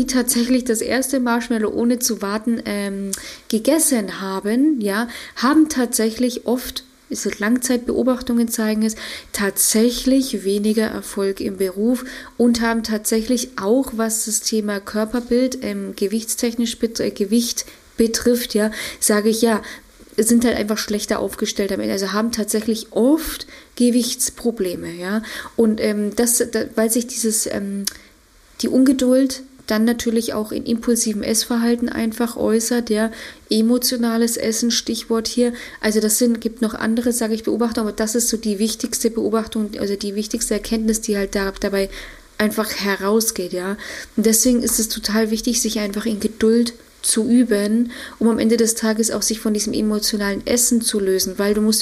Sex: female